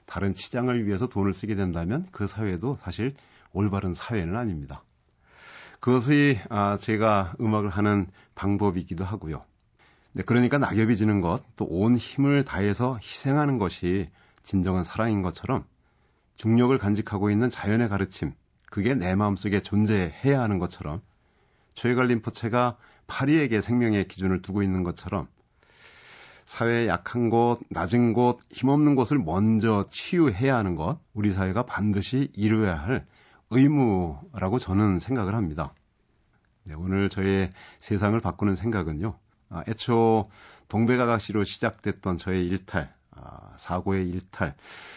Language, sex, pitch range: Korean, male, 95-120 Hz